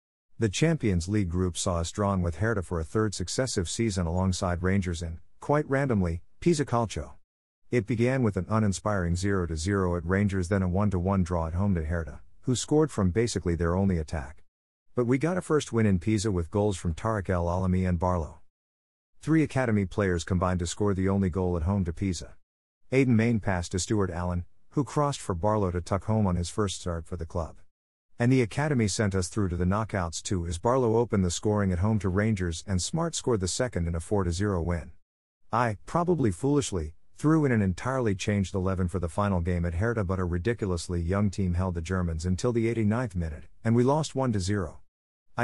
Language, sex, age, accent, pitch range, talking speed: English, male, 50-69, American, 85-110 Hz, 205 wpm